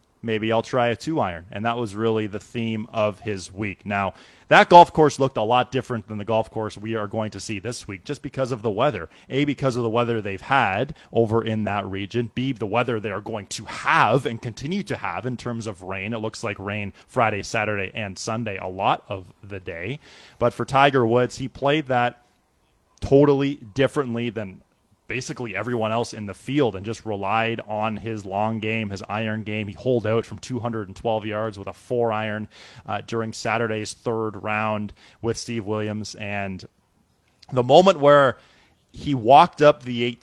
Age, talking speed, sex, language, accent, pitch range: 30-49, 195 wpm, male, English, American, 105-125 Hz